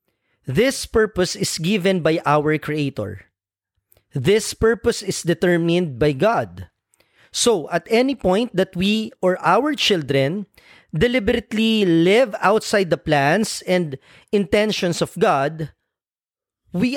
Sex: male